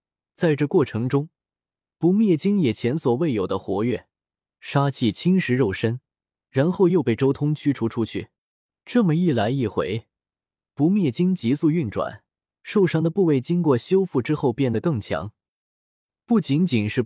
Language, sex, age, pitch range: Chinese, male, 20-39, 115-165 Hz